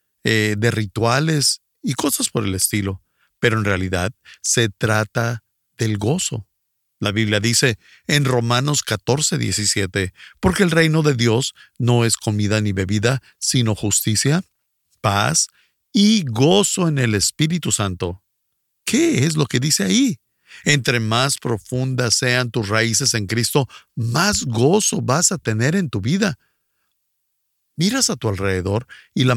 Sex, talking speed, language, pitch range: male, 140 wpm, Spanish, 110-150 Hz